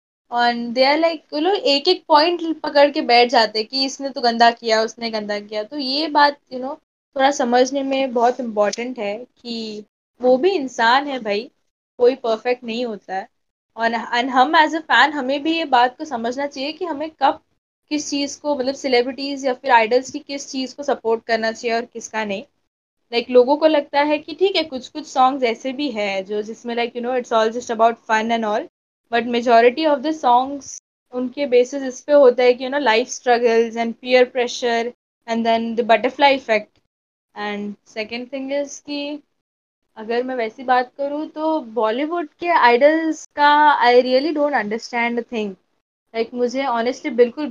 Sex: female